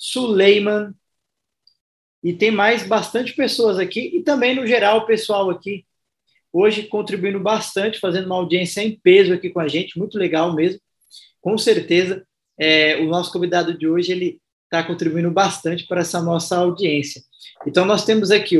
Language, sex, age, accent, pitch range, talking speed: Portuguese, male, 20-39, Brazilian, 165-200 Hz, 155 wpm